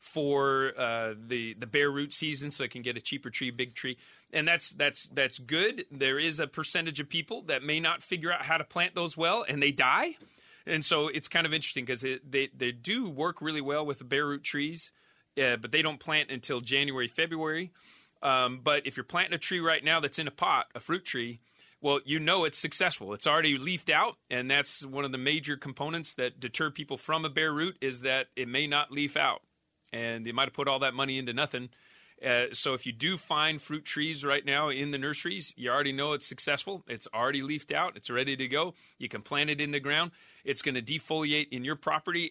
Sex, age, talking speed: male, 30-49, 230 wpm